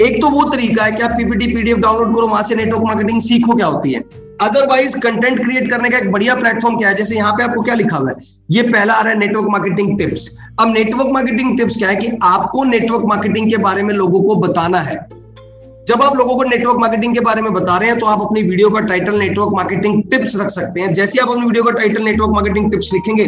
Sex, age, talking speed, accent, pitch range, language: male, 30-49, 190 wpm, native, 190-235 Hz, Hindi